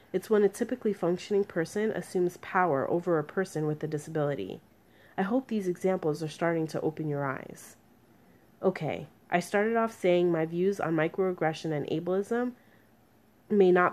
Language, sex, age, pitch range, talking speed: English, female, 30-49, 155-200 Hz, 160 wpm